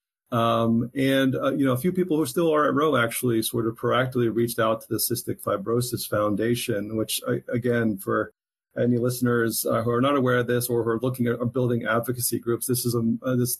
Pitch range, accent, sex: 115-130 Hz, American, male